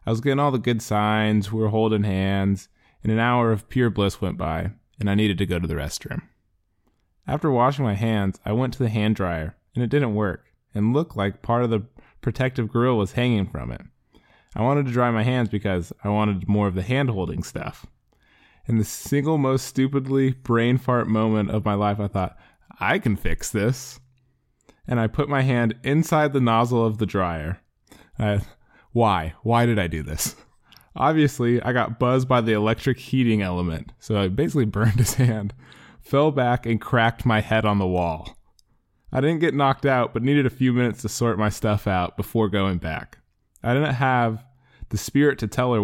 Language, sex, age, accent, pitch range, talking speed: English, male, 20-39, American, 100-125 Hz, 200 wpm